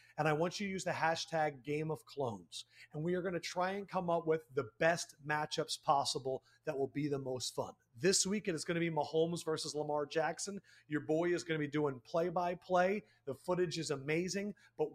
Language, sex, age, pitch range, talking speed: English, male, 40-59, 130-170 Hz, 215 wpm